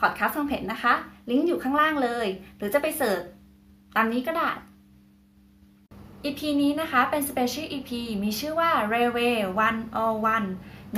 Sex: female